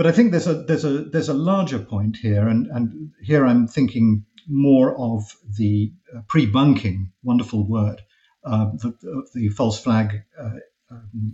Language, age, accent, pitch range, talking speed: English, 50-69, British, 110-140 Hz, 160 wpm